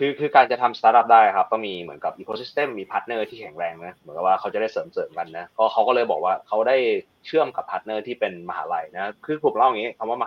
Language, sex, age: Thai, male, 20-39